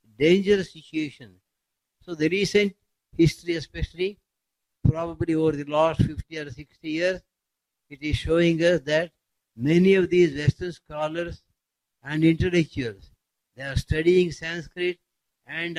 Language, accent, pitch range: English, Indian, 145-175 Hz